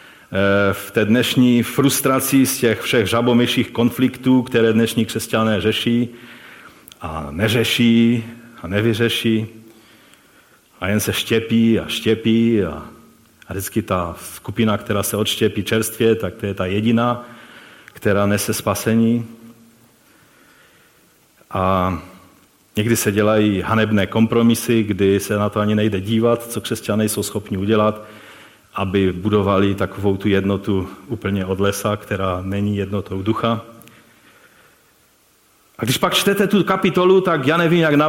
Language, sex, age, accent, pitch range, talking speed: Czech, male, 40-59, native, 100-125 Hz, 125 wpm